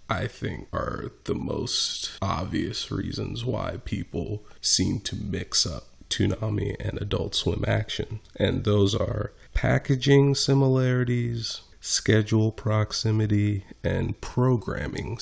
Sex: male